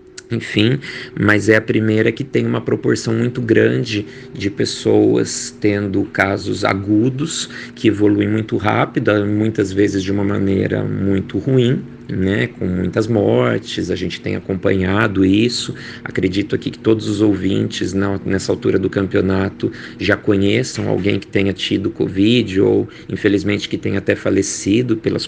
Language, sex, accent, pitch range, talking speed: Portuguese, male, Brazilian, 100-125 Hz, 140 wpm